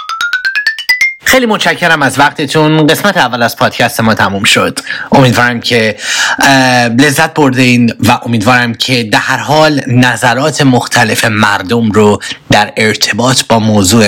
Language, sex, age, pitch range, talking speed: English, male, 30-49, 105-140 Hz, 125 wpm